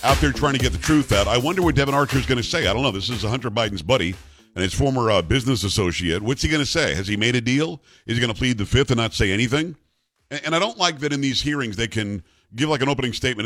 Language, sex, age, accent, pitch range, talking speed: English, male, 50-69, American, 105-135 Hz, 300 wpm